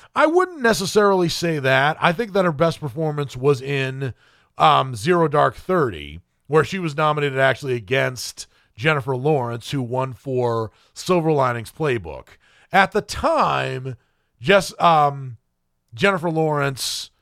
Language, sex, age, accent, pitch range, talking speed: English, male, 30-49, American, 130-175 Hz, 130 wpm